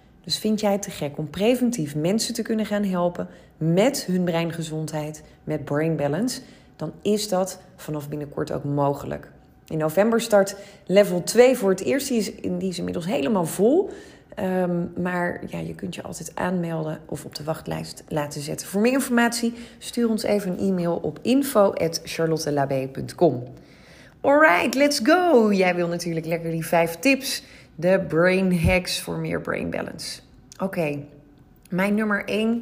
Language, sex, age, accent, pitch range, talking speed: Dutch, female, 30-49, Dutch, 155-220 Hz, 155 wpm